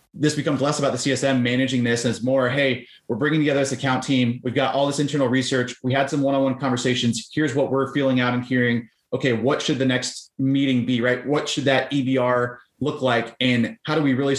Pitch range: 125-140 Hz